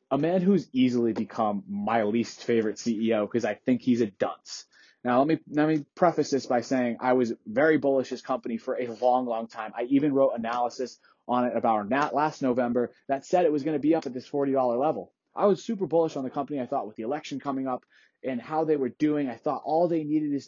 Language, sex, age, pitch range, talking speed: English, male, 20-39, 125-150 Hz, 235 wpm